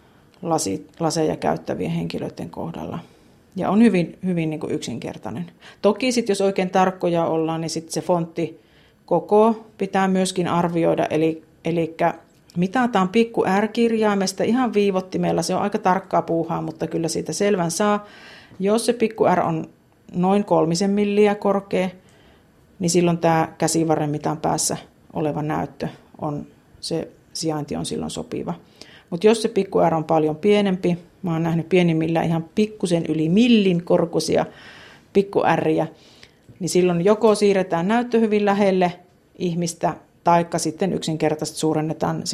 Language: Finnish